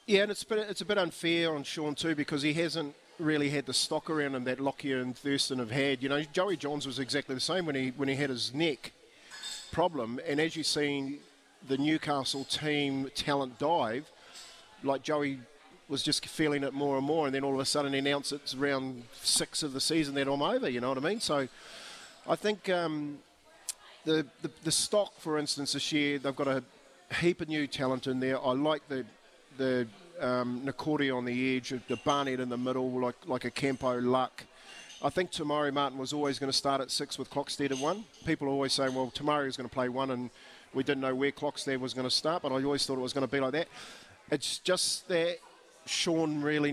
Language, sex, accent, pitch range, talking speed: English, male, Australian, 130-155 Hz, 220 wpm